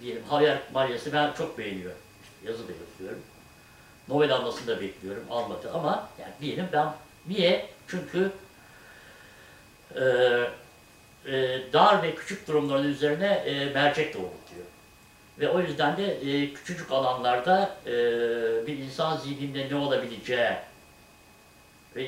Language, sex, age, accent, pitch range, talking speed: Turkish, male, 60-79, native, 120-170 Hz, 115 wpm